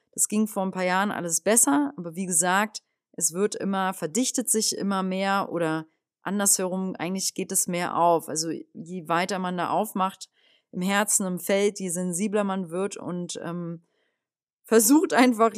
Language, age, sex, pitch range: German, 30-49, female, 170-205 Hz